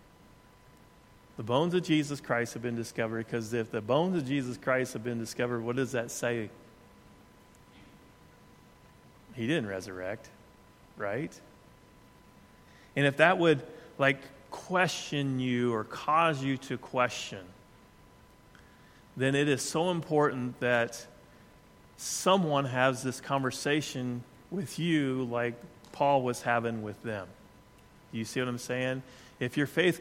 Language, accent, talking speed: English, American, 130 wpm